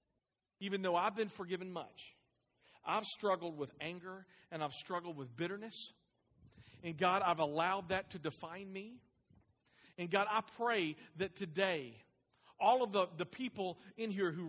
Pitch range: 155-205 Hz